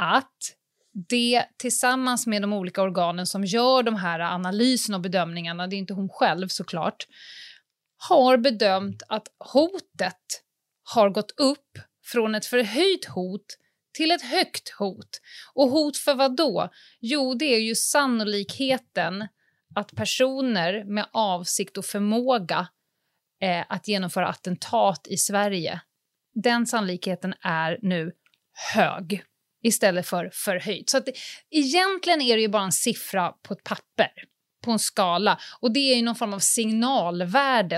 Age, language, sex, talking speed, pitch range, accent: 30-49, Swedish, female, 140 wpm, 190-255 Hz, native